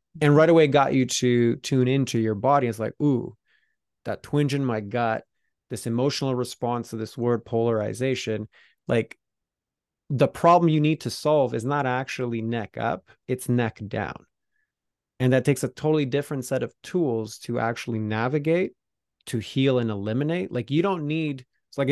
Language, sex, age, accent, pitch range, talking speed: English, male, 20-39, American, 115-140 Hz, 170 wpm